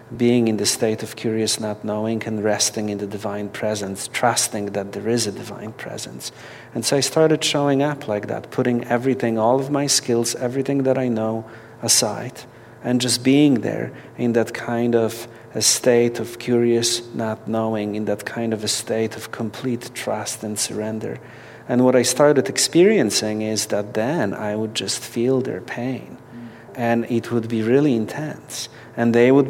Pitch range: 110-130 Hz